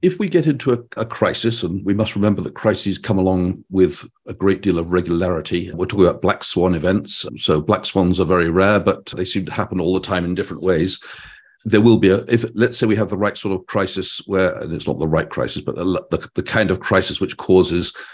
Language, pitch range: English, 90-110 Hz